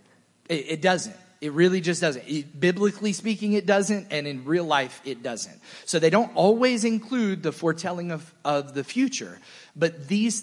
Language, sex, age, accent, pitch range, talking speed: English, male, 30-49, American, 145-195 Hz, 165 wpm